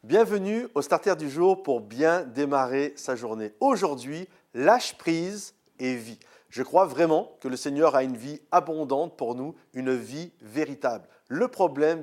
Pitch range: 130-175 Hz